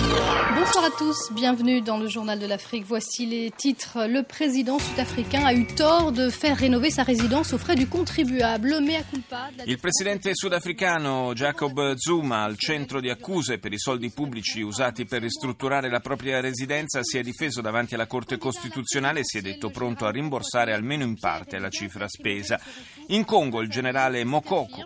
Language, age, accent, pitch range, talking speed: Italian, 30-49, native, 115-180 Hz, 175 wpm